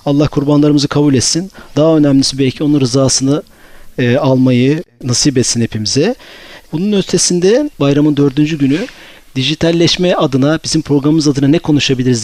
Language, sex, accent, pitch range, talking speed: Turkish, male, native, 130-160 Hz, 130 wpm